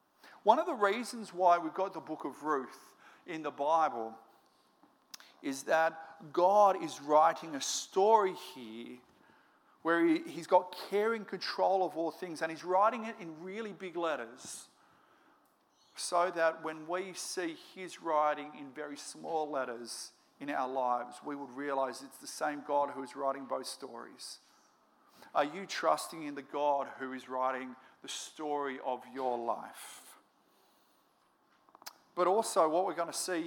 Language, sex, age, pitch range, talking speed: English, male, 50-69, 135-185 Hz, 150 wpm